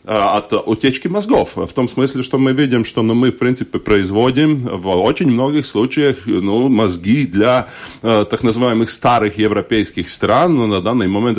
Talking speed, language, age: 165 wpm, Russian, 30-49